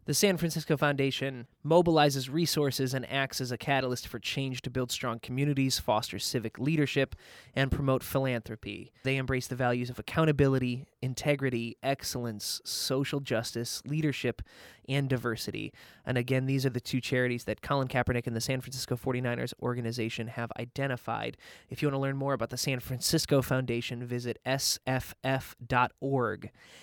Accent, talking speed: American, 150 wpm